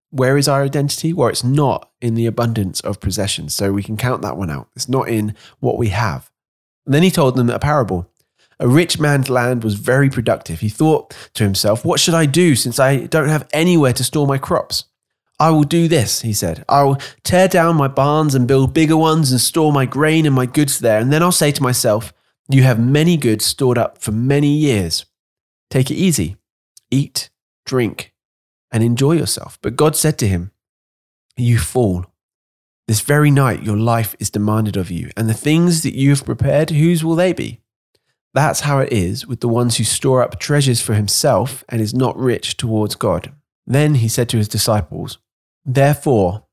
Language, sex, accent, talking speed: English, male, British, 200 wpm